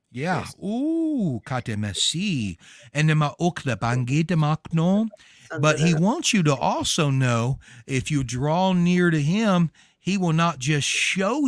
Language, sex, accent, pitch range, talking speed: English, male, American, 125-175 Hz, 115 wpm